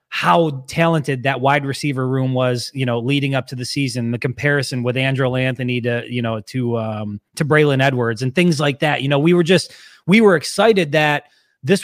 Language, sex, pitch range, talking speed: English, male, 130-175 Hz, 210 wpm